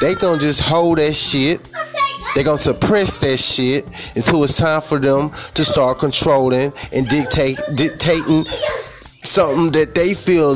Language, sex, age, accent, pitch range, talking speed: English, male, 20-39, American, 130-165 Hz, 140 wpm